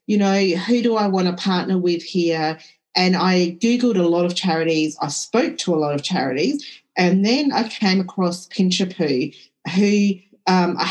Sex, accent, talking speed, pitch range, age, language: female, Australian, 180 wpm, 165-205 Hz, 40-59, English